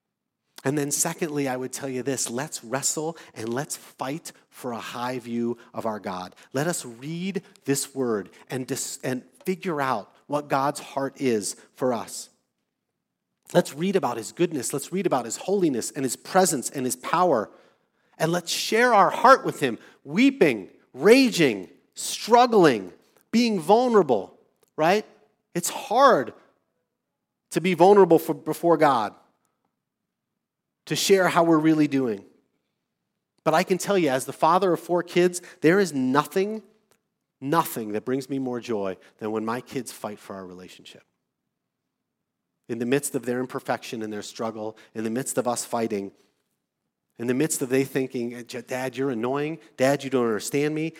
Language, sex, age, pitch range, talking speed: English, male, 40-59, 125-170 Hz, 160 wpm